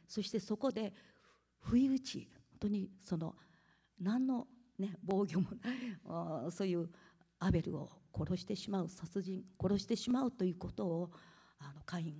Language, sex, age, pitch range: Japanese, female, 50-69, 145-205 Hz